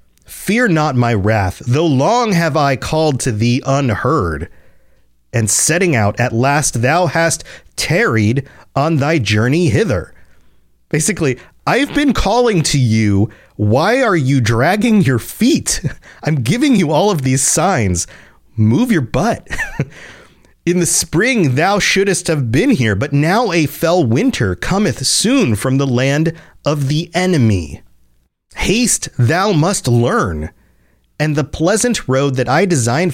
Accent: American